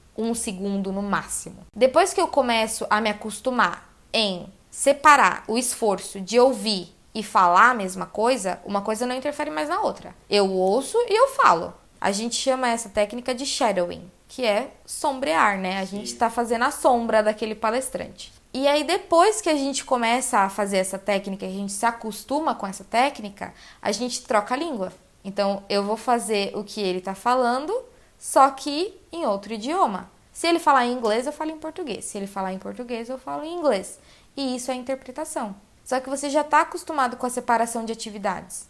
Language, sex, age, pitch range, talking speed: Portuguese, female, 20-39, 205-275 Hz, 190 wpm